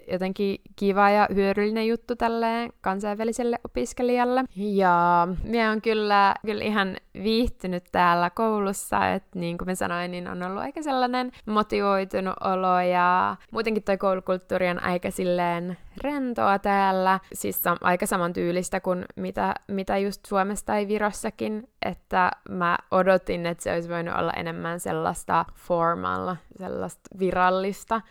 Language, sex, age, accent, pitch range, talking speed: Finnish, female, 20-39, native, 180-210 Hz, 125 wpm